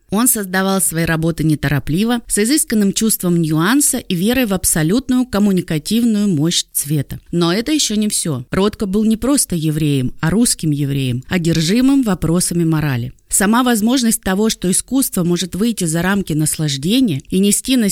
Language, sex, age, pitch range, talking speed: Russian, female, 20-39, 165-230 Hz, 150 wpm